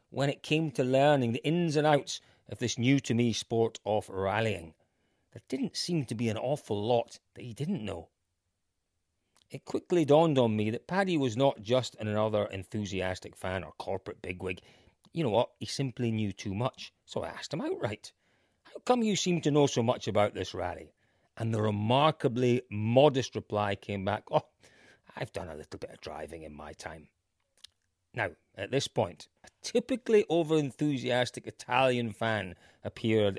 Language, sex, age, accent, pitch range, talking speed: English, male, 40-59, British, 105-140 Hz, 170 wpm